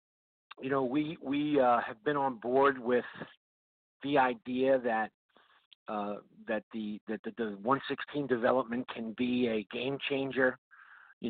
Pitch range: 110-135 Hz